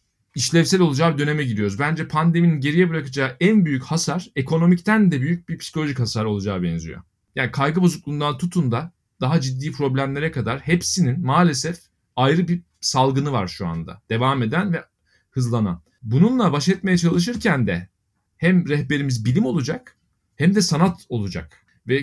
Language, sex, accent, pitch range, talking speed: Turkish, male, native, 120-175 Hz, 145 wpm